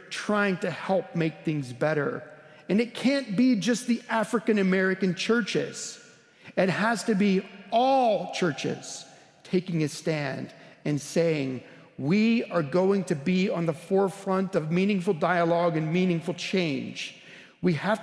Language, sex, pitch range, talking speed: English, male, 160-210 Hz, 135 wpm